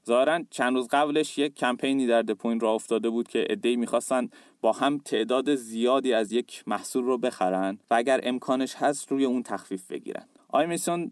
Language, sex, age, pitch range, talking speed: Persian, male, 30-49, 115-140 Hz, 175 wpm